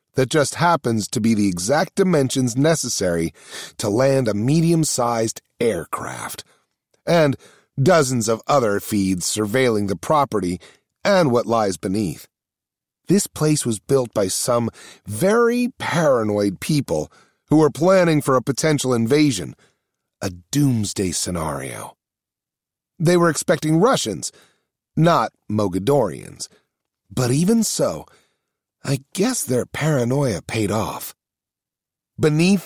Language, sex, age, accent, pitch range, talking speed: English, male, 40-59, American, 115-160 Hz, 110 wpm